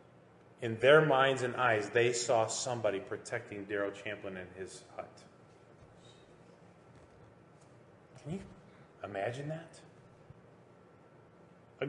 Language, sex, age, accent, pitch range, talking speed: English, male, 30-49, American, 115-155 Hz, 95 wpm